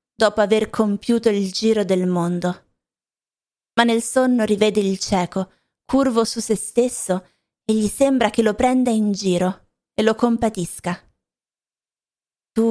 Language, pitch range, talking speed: Italian, 190-230 Hz, 135 wpm